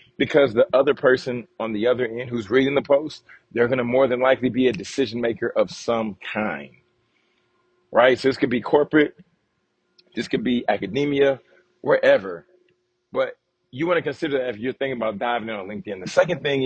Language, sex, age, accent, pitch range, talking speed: English, male, 40-59, American, 125-155 Hz, 185 wpm